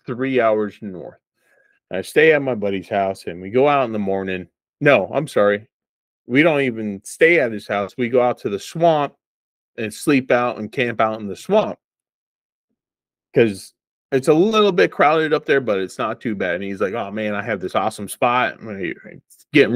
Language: English